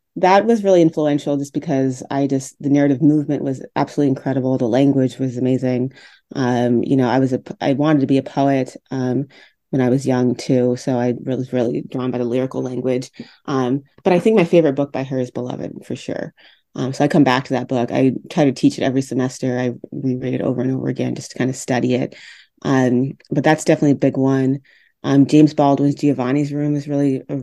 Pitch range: 130-145 Hz